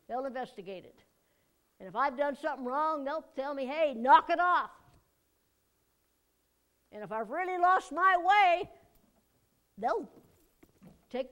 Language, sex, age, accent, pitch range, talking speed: English, female, 60-79, American, 260-320 Hz, 135 wpm